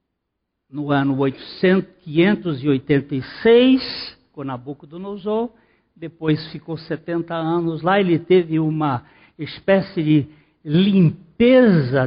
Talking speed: 85 wpm